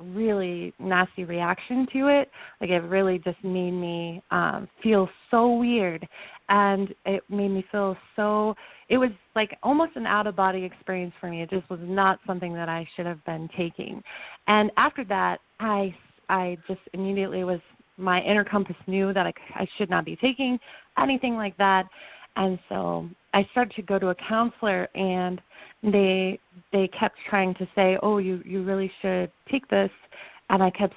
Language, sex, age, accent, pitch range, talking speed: English, female, 30-49, American, 185-215 Hz, 170 wpm